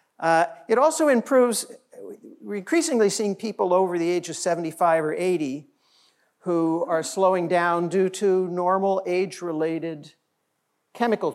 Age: 50-69